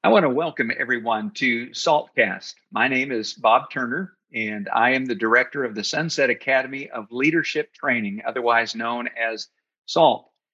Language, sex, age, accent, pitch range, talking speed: English, male, 50-69, American, 120-150 Hz, 160 wpm